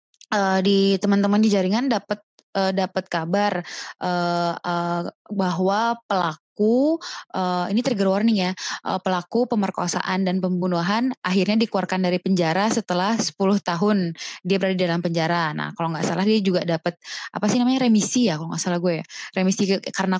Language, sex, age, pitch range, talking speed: Indonesian, female, 20-39, 180-210 Hz, 155 wpm